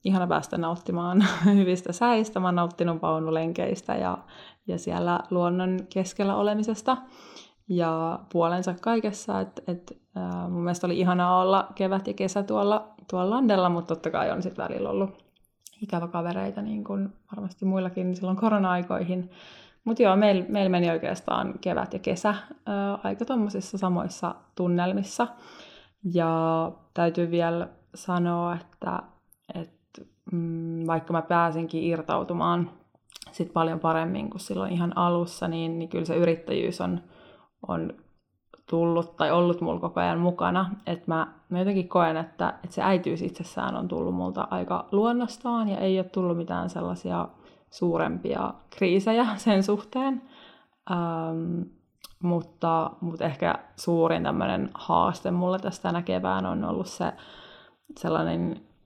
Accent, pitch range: native, 165-195 Hz